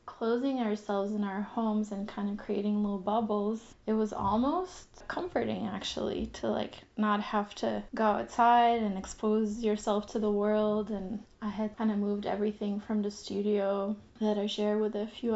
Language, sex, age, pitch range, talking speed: French, female, 20-39, 205-225 Hz, 175 wpm